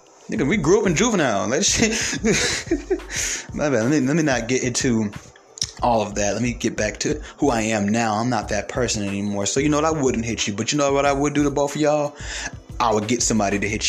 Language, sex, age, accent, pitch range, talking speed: English, male, 30-49, American, 110-155 Hz, 235 wpm